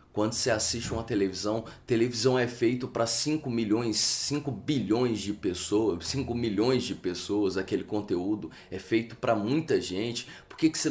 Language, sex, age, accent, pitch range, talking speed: Portuguese, male, 20-39, Brazilian, 105-130 Hz, 165 wpm